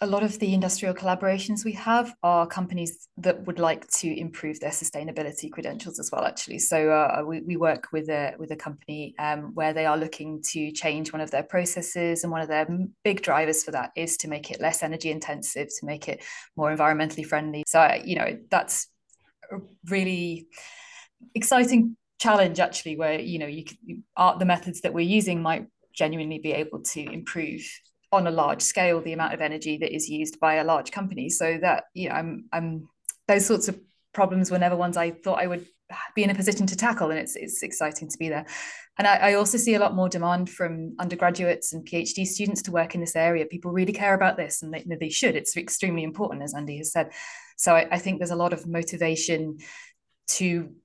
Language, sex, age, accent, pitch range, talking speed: English, female, 20-39, British, 160-190 Hz, 215 wpm